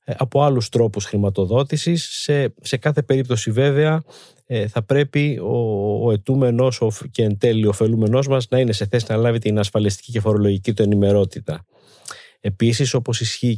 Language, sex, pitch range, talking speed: Greek, male, 105-135 Hz, 145 wpm